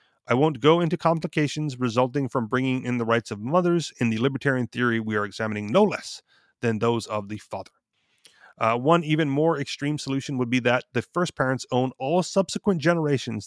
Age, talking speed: 30-49, 190 wpm